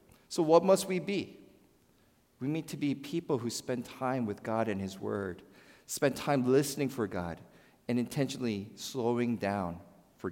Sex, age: male, 40-59